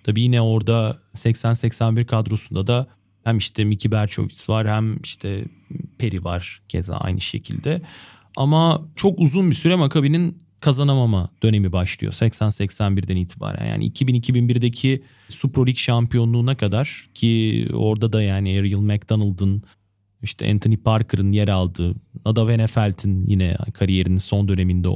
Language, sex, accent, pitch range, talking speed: Turkish, male, native, 100-130 Hz, 125 wpm